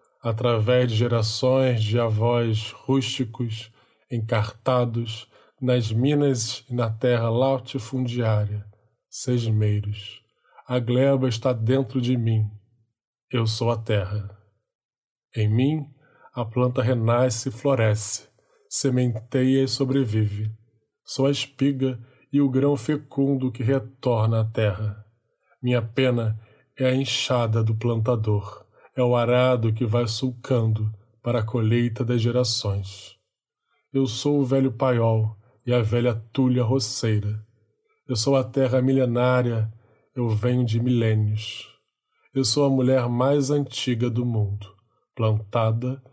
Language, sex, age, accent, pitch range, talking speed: Portuguese, male, 20-39, Brazilian, 110-130 Hz, 120 wpm